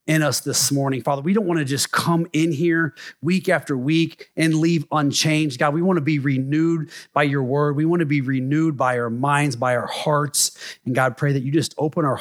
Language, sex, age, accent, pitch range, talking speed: English, male, 30-49, American, 130-165 Hz, 230 wpm